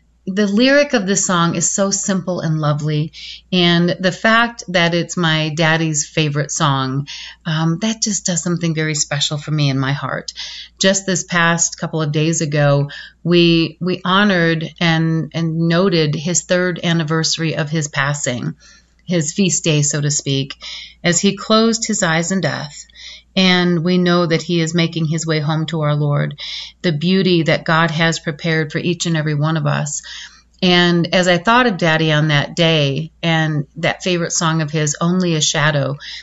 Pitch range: 155-180 Hz